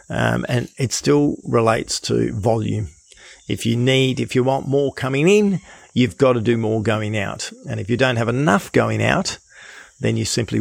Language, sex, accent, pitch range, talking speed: English, male, Australian, 110-135 Hz, 190 wpm